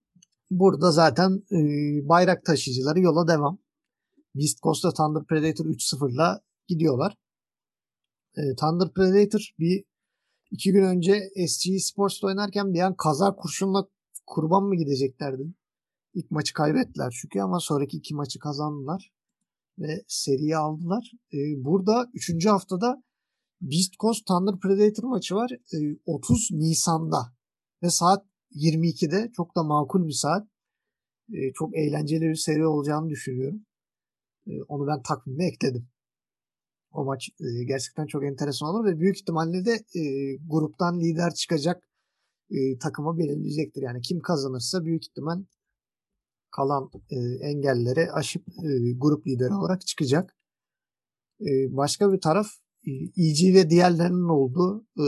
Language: Turkish